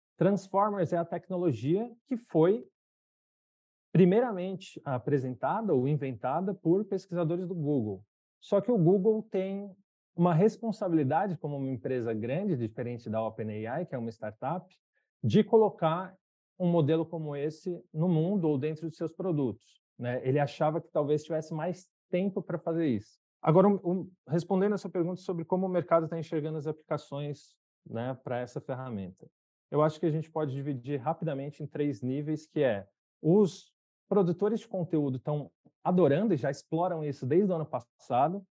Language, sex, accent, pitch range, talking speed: Portuguese, male, Brazilian, 130-175 Hz, 155 wpm